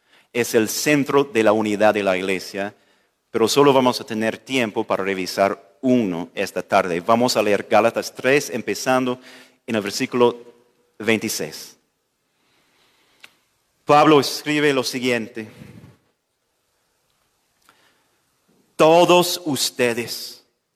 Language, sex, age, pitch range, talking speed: Spanish, male, 40-59, 115-155 Hz, 105 wpm